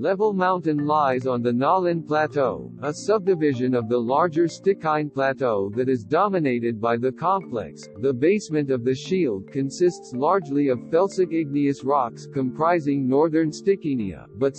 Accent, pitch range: American, 130-175 Hz